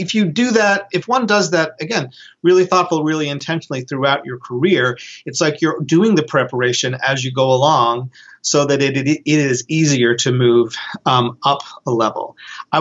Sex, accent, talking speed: male, American, 185 wpm